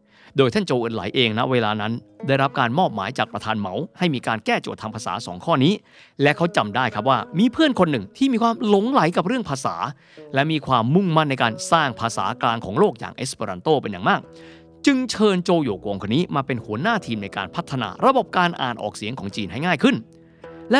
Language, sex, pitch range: Thai, male, 105-165 Hz